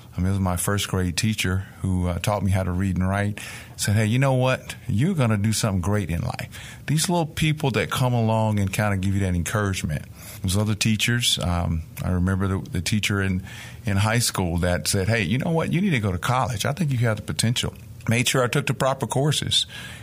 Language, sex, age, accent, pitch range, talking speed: English, male, 50-69, American, 100-120 Hz, 235 wpm